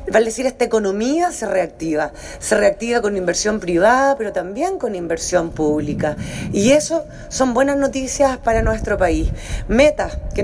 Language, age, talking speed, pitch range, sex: Spanish, 30-49, 150 wpm, 200-270 Hz, female